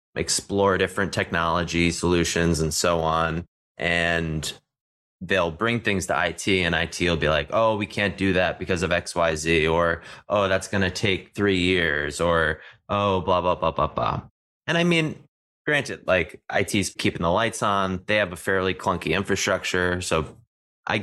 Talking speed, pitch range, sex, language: 175 wpm, 85-100 Hz, male, English